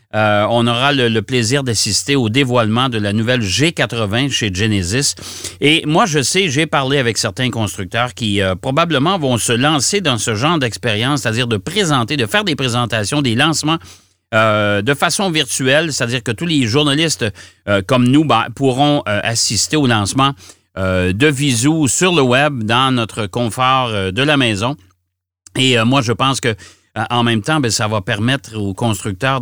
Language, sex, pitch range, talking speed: French, male, 110-145 Hz, 180 wpm